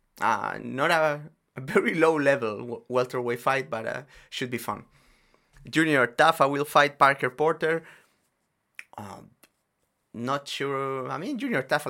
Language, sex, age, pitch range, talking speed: English, male, 30-49, 115-145 Hz, 130 wpm